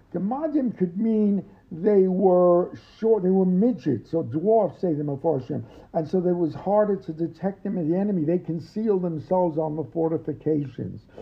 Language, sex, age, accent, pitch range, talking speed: English, male, 60-79, American, 155-200 Hz, 160 wpm